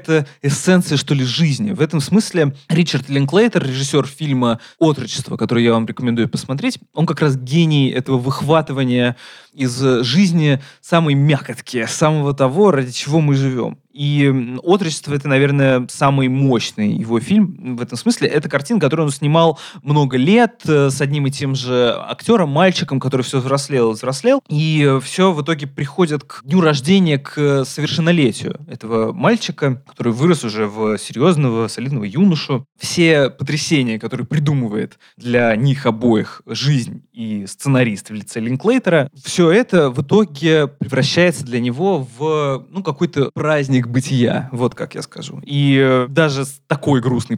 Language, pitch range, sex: Russian, 125-160 Hz, male